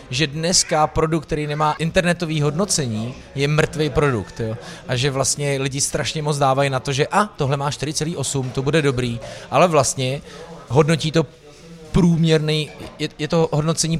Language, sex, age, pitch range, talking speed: Czech, male, 30-49, 130-155 Hz, 155 wpm